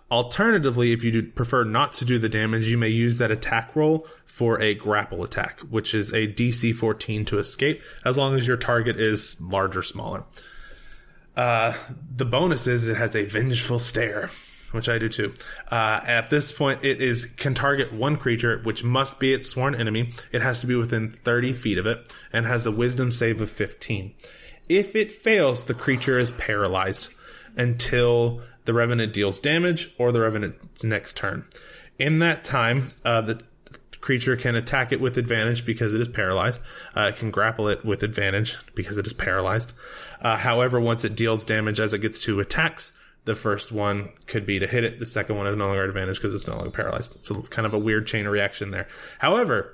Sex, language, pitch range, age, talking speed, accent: male, English, 110-125 Hz, 20-39, 200 wpm, American